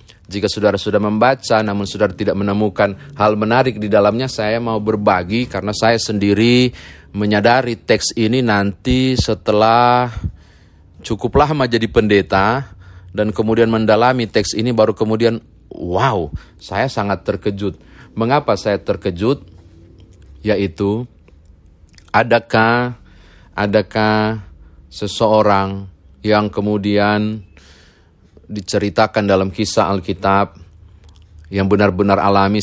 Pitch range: 90-110 Hz